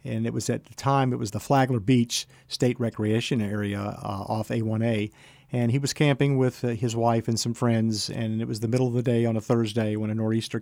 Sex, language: male, English